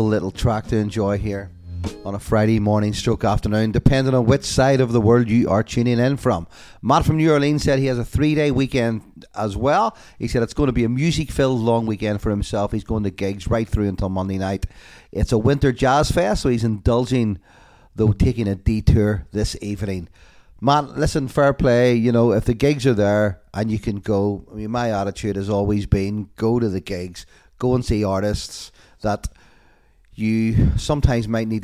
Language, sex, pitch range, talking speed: English, male, 105-130 Hz, 205 wpm